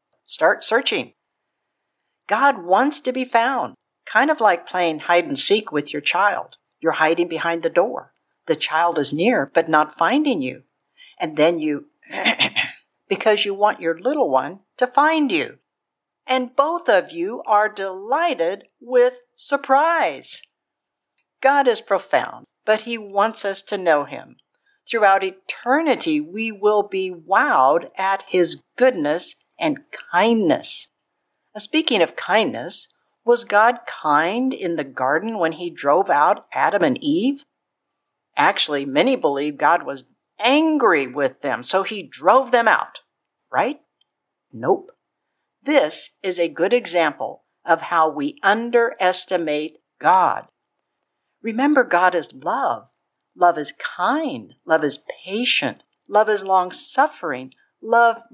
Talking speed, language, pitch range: 130 wpm, English, 175-265 Hz